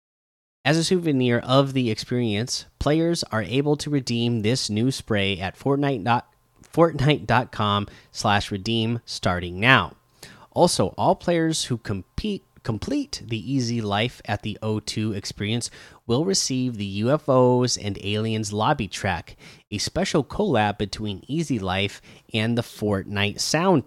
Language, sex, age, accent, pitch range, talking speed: English, male, 30-49, American, 105-135 Hz, 125 wpm